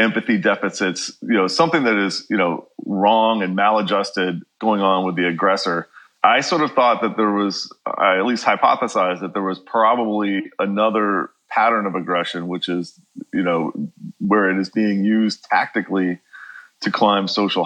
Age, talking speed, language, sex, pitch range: 30-49, 165 wpm, English, male, 95-110 Hz